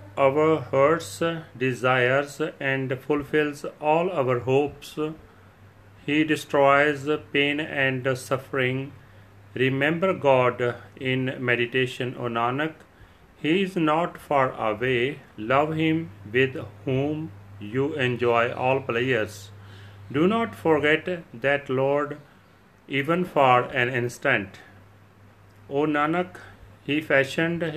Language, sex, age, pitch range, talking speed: Punjabi, male, 40-59, 110-145 Hz, 100 wpm